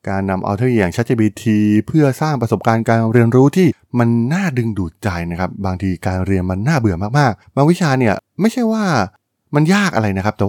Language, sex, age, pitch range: Thai, male, 20-39, 95-125 Hz